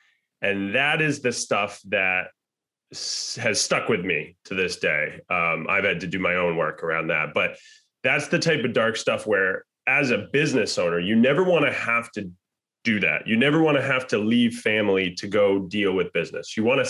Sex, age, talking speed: male, 30-49, 210 wpm